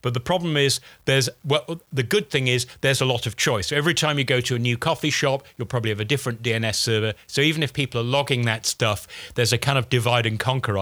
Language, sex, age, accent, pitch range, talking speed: English, male, 40-59, British, 115-145 Hz, 250 wpm